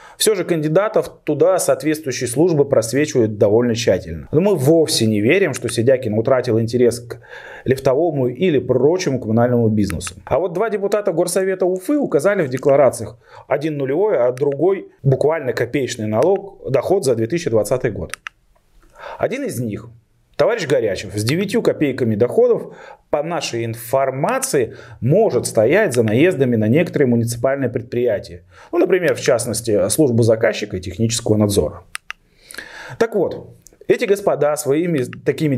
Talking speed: 135 wpm